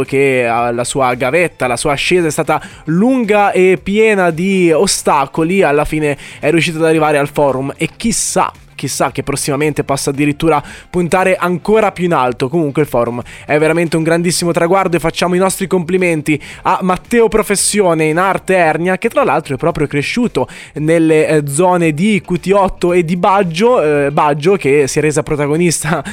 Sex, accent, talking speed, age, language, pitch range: male, native, 170 wpm, 20-39, Italian, 150-195 Hz